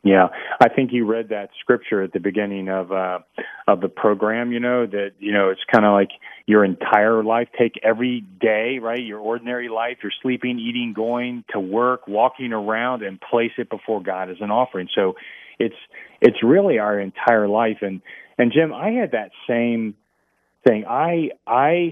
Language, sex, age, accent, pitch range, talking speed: English, male, 40-59, American, 105-125 Hz, 185 wpm